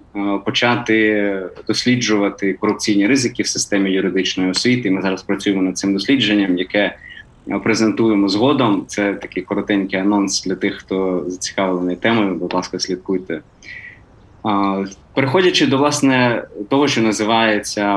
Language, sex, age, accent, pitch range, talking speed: Ukrainian, male, 20-39, native, 100-125 Hz, 115 wpm